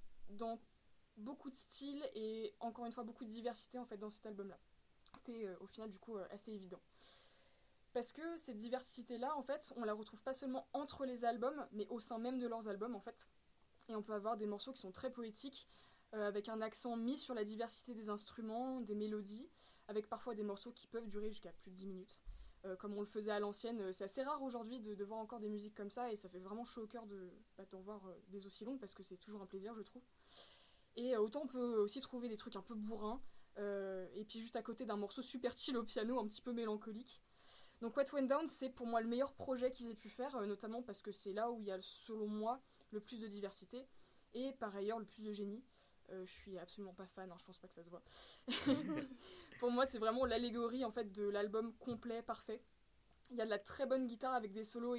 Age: 20-39